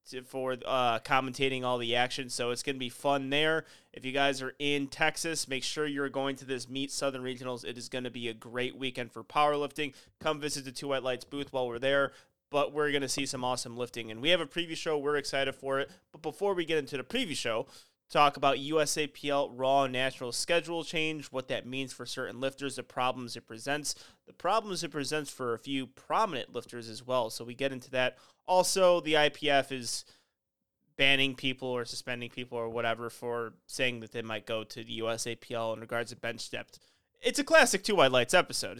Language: English